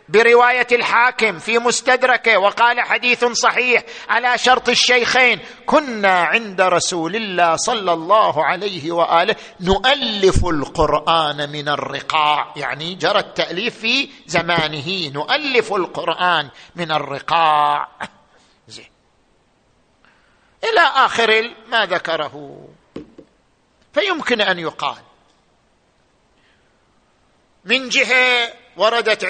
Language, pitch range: Arabic, 190-240 Hz